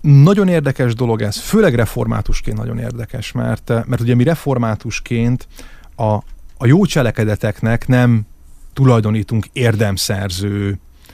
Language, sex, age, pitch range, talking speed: Hungarian, male, 30-49, 110-140 Hz, 110 wpm